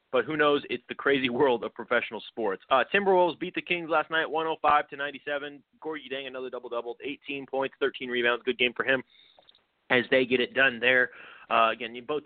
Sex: male